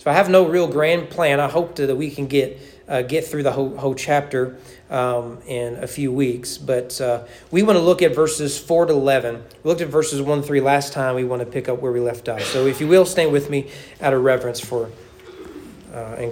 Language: English